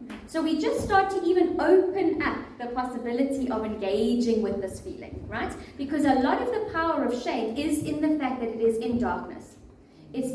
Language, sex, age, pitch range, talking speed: English, female, 30-49, 230-300 Hz, 195 wpm